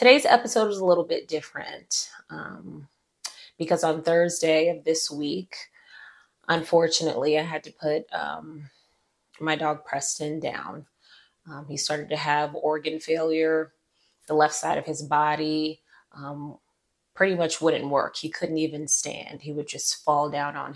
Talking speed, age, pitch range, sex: 150 wpm, 20-39, 150-165 Hz, female